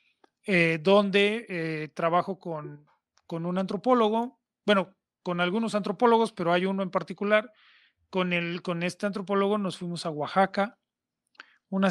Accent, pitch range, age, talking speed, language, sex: Mexican, 160-195 Hz, 30-49, 135 wpm, Spanish, male